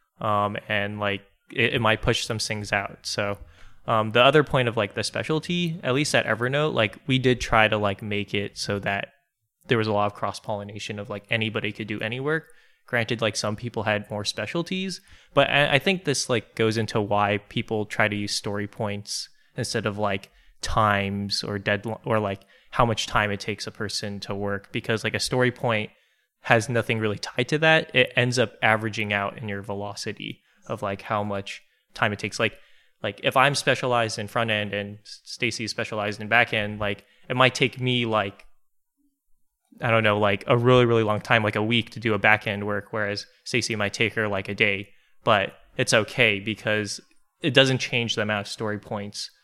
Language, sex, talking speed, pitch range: English, male, 205 wpm, 105-120 Hz